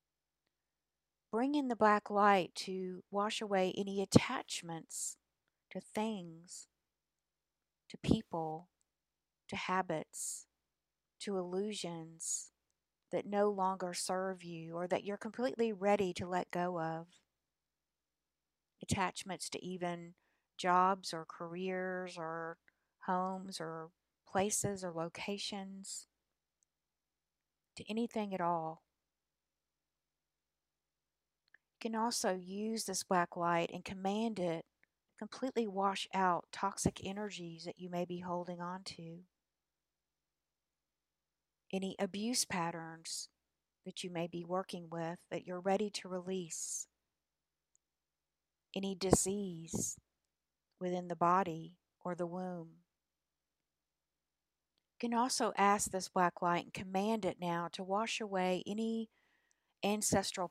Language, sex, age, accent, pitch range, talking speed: English, female, 40-59, American, 170-200 Hz, 105 wpm